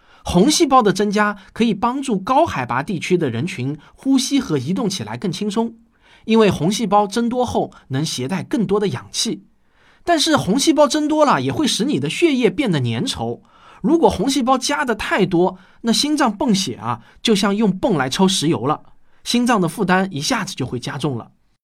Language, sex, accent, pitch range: Chinese, male, native, 145-230 Hz